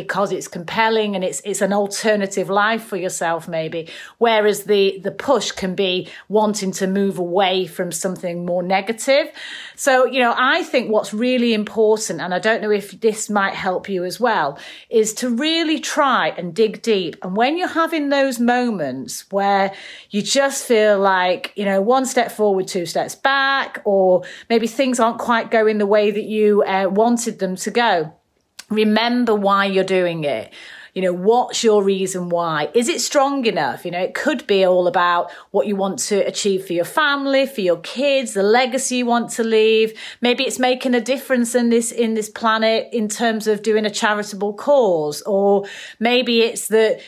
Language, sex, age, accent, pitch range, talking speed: English, female, 30-49, British, 190-245 Hz, 185 wpm